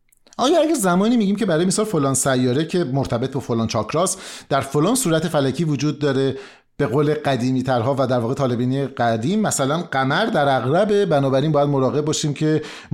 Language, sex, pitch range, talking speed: Persian, male, 120-170 Hz, 175 wpm